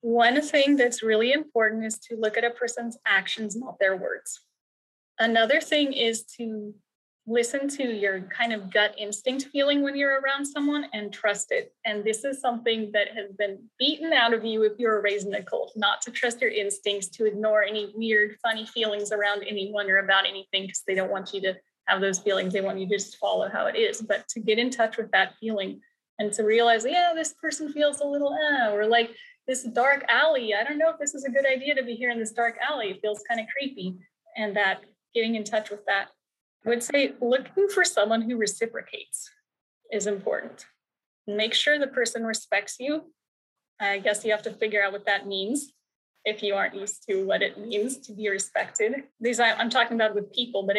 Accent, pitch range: American, 205-270 Hz